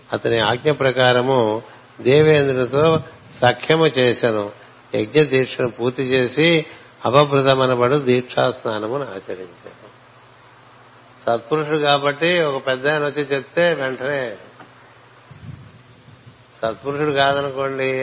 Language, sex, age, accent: Telugu, male, 60-79, native